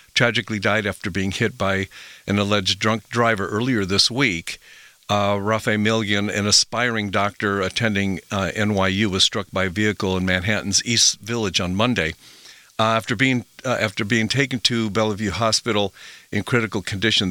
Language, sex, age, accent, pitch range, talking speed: English, male, 50-69, American, 95-110 Hz, 160 wpm